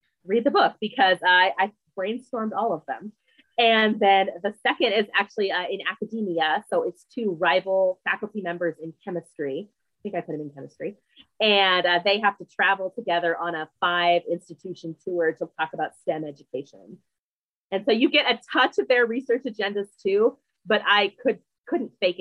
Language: English